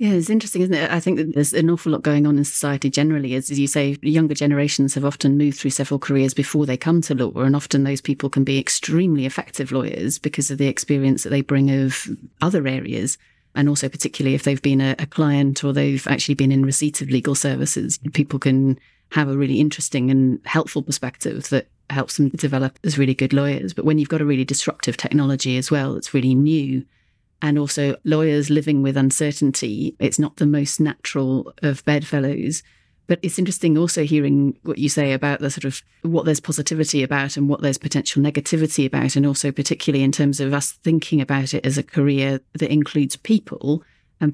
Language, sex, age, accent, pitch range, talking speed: English, female, 30-49, British, 135-150 Hz, 205 wpm